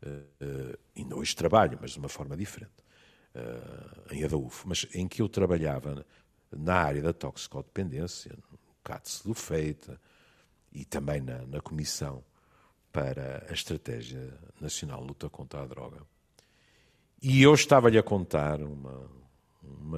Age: 50-69